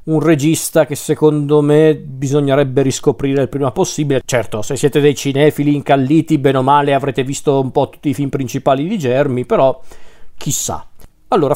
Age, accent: 40-59, native